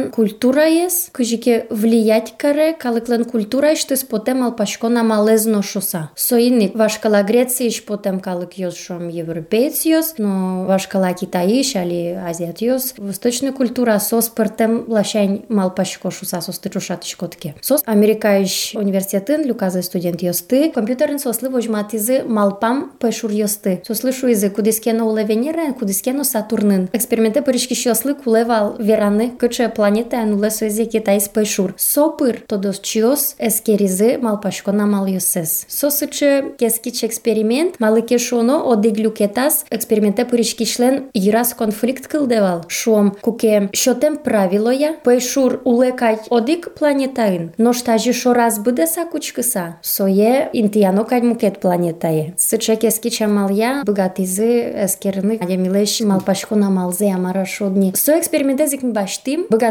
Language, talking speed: Russian, 75 wpm